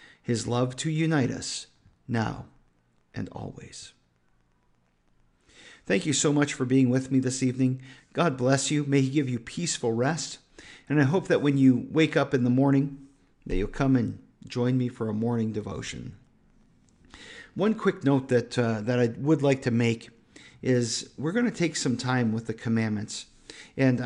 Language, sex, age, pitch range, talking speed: English, male, 50-69, 115-135 Hz, 175 wpm